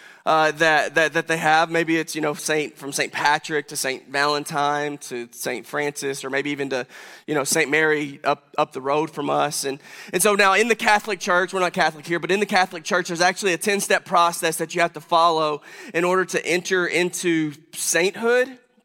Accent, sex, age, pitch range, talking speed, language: American, male, 20-39, 155-185 Hz, 215 wpm, English